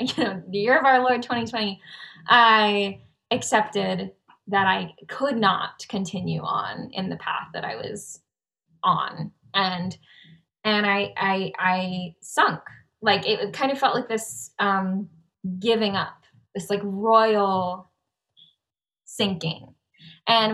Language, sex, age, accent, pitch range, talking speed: English, female, 10-29, American, 180-210 Hz, 130 wpm